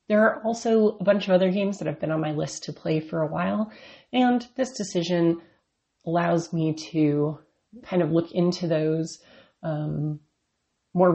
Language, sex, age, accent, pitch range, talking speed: English, female, 30-49, American, 160-205 Hz, 170 wpm